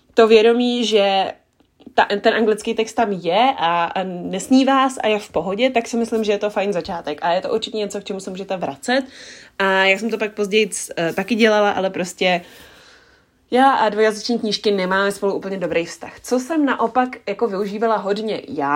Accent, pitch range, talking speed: native, 170-215 Hz, 190 wpm